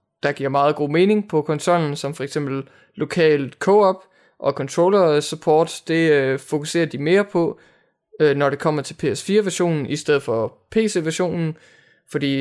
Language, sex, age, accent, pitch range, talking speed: English, male, 20-39, Danish, 135-165 Hz, 165 wpm